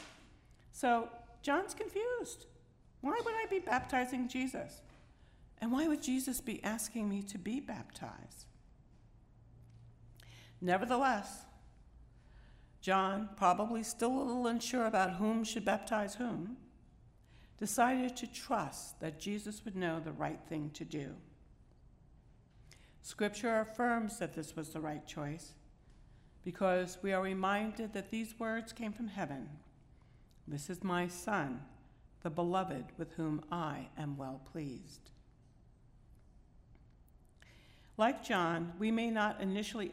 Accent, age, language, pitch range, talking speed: American, 60-79, English, 160-230 Hz, 120 wpm